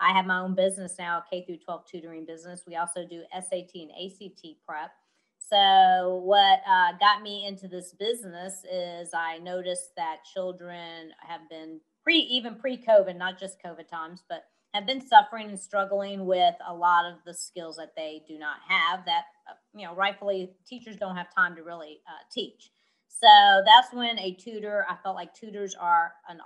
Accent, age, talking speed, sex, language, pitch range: American, 30-49, 180 wpm, female, English, 170-205 Hz